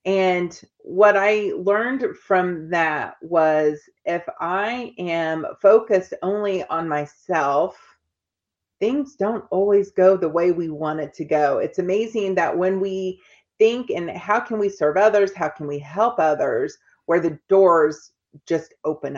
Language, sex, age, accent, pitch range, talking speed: English, female, 30-49, American, 155-195 Hz, 145 wpm